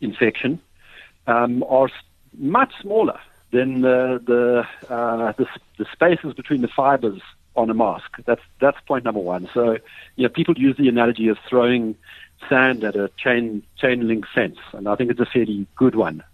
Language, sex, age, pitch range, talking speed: English, male, 60-79, 105-130 Hz, 175 wpm